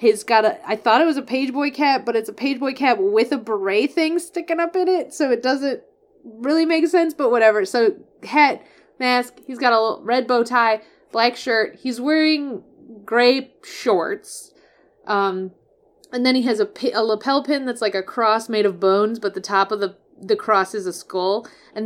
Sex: female